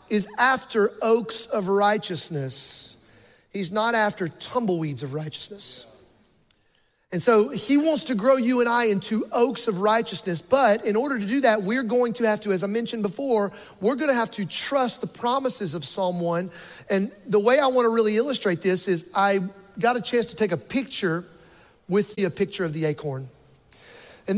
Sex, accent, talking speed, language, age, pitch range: male, American, 180 wpm, English, 40-59, 190-245 Hz